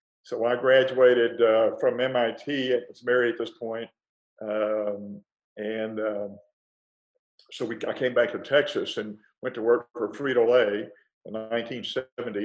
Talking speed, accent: 145 wpm, American